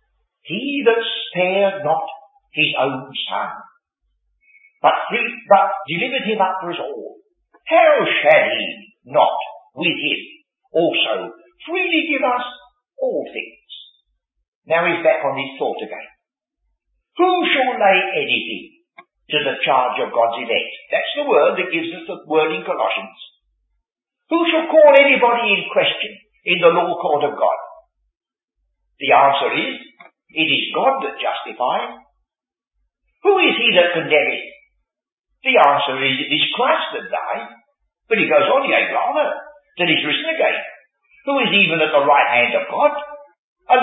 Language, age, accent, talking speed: English, 50-69, British, 145 wpm